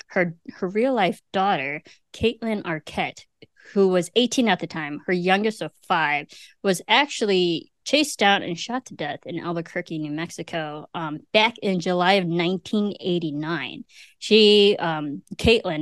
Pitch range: 170-210 Hz